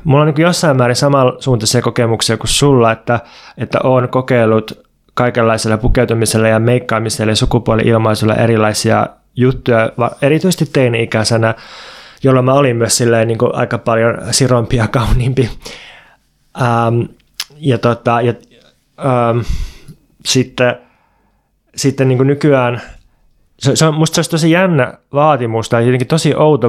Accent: native